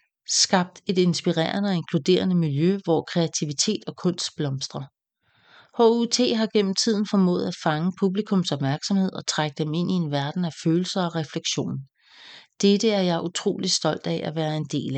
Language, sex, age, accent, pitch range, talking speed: English, female, 40-59, Danish, 155-190 Hz, 165 wpm